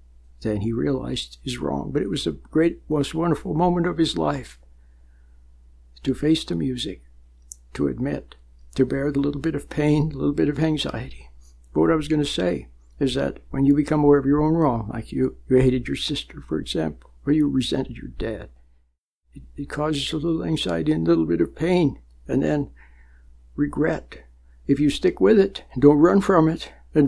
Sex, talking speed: male, 200 wpm